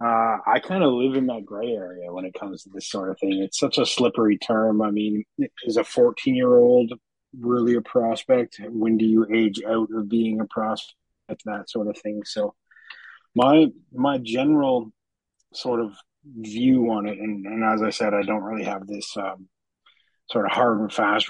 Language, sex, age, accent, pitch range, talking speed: English, male, 30-49, American, 105-130 Hz, 190 wpm